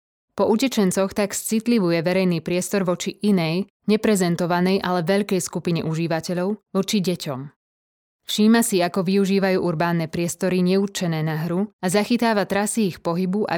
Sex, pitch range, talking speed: female, 170-205 Hz, 135 wpm